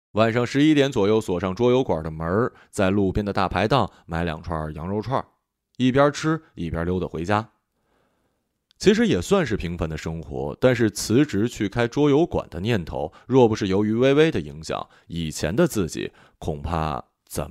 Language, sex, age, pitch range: Chinese, male, 20-39, 85-140 Hz